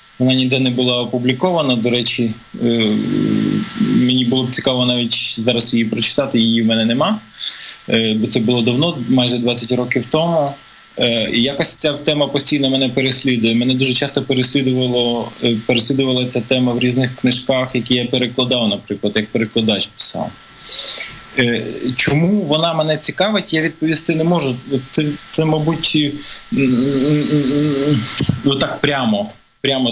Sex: male